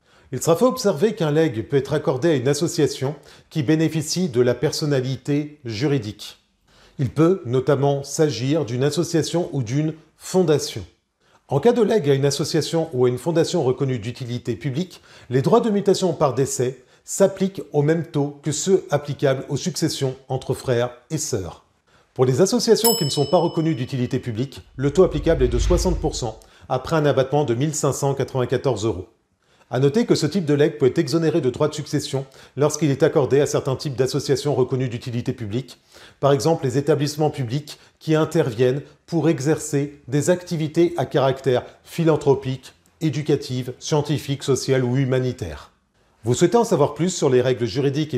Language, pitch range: French, 130-160 Hz